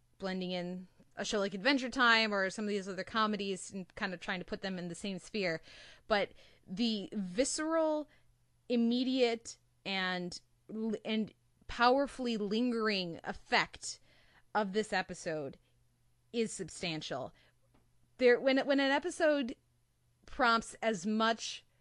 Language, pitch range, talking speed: English, 185-245 Hz, 130 wpm